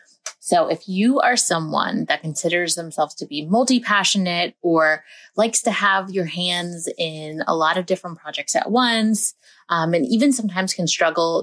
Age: 30-49